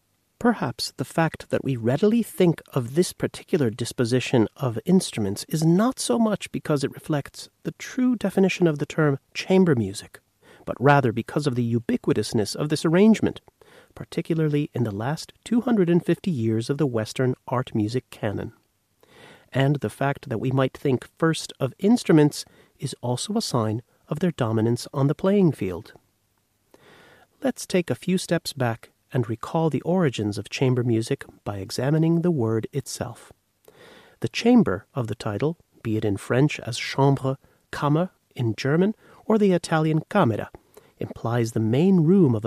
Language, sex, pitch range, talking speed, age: English, male, 120-175 Hz, 155 wpm, 30-49